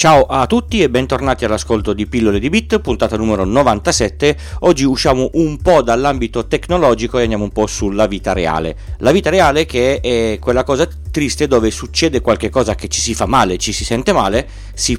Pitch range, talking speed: 100-140 Hz, 190 wpm